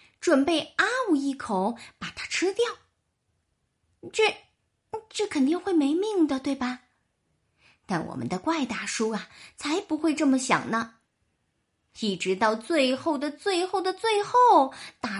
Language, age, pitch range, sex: Chinese, 30-49, 220-365 Hz, female